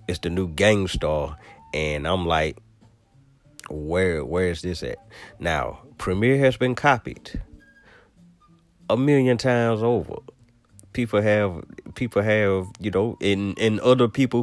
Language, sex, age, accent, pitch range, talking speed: English, male, 30-49, American, 95-125 Hz, 130 wpm